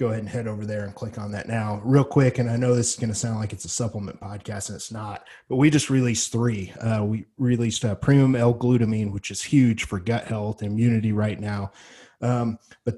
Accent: American